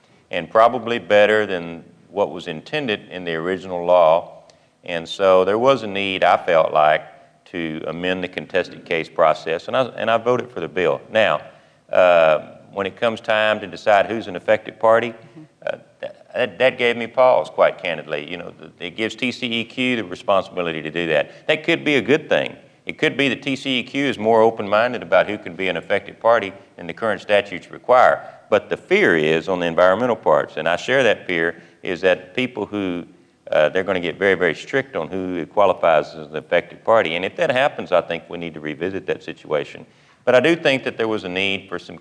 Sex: male